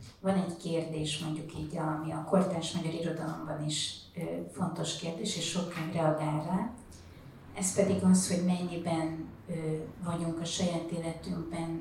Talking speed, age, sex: 130 wpm, 30-49, female